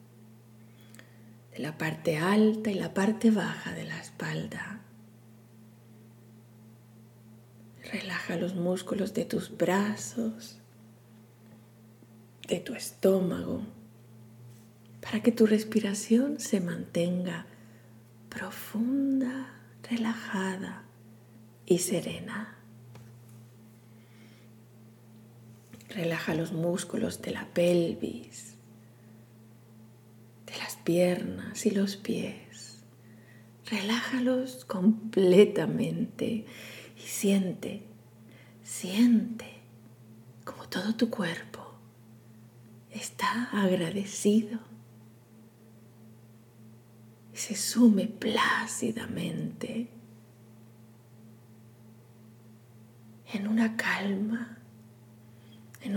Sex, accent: female, Spanish